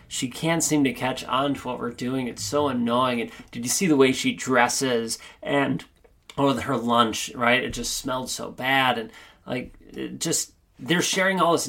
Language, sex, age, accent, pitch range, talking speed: English, male, 30-49, American, 120-155 Hz, 200 wpm